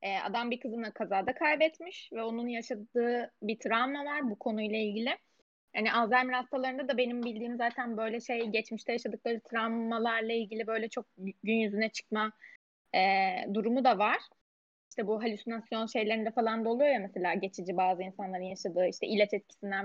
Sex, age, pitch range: female, 10-29, 220-265 Hz